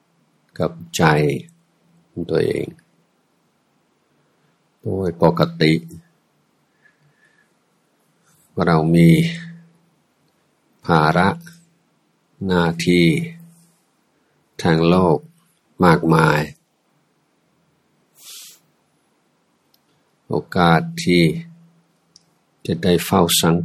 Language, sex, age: Thai, male, 60-79